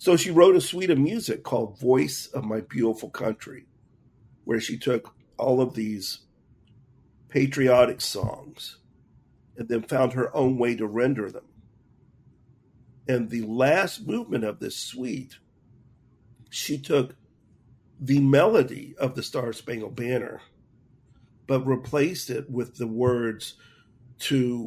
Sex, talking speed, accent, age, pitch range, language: male, 130 wpm, American, 50-69, 120-140 Hz, English